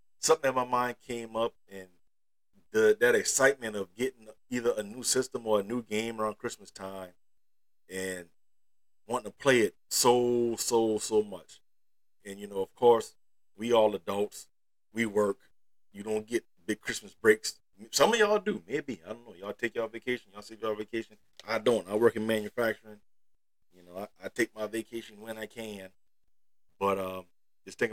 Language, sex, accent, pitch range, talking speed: English, male, American, 95-115 Hz, 180 wpm